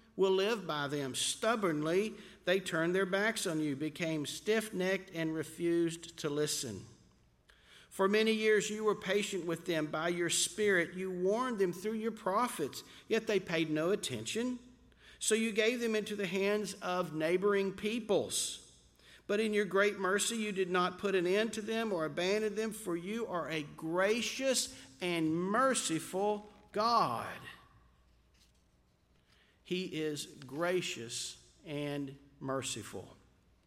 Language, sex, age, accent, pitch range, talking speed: English, male, 50-69, American, 155-205 Hz, 140 wpm